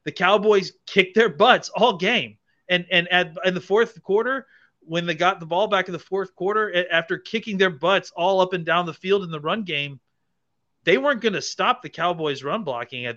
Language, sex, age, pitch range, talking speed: English, male, 30-49, 155-190 Hz, 215 wpm